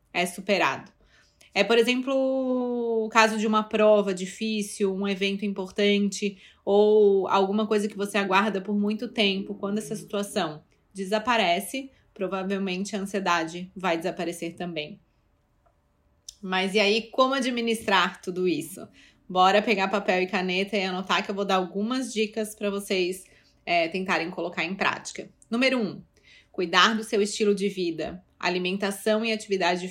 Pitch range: 180-220 Hz